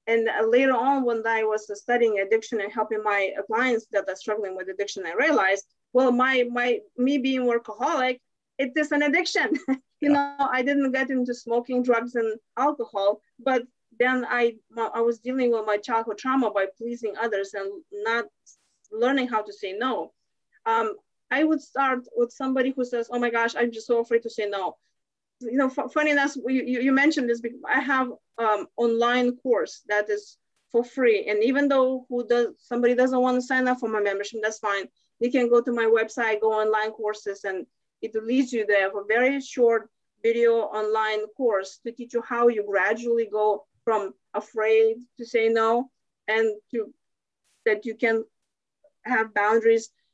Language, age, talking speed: English, 30-49, 180 wpm